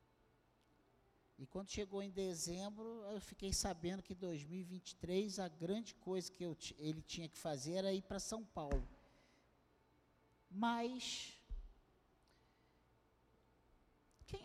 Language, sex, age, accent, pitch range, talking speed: Portuguese, male, 50-69, Brazilian, 120-180 Hz, 110 wpm